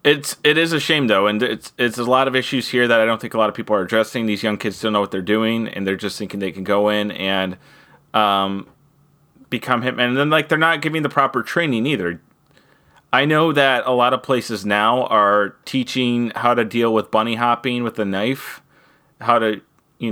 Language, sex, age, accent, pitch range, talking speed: English, male, 30-49, American, 105-140 Hz, 225 wpm